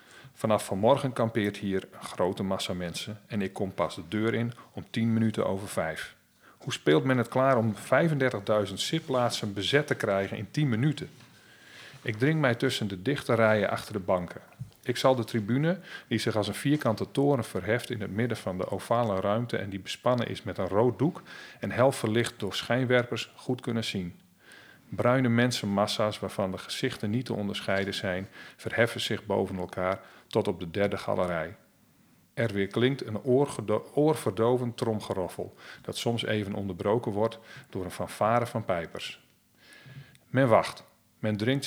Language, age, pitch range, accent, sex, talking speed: Dutch, 40-59, 100-125 Hz, Dutch, male, 165 wpm